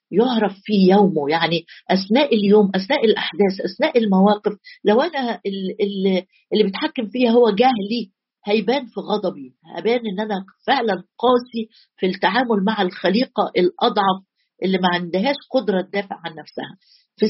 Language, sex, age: Arabic, female, 50-69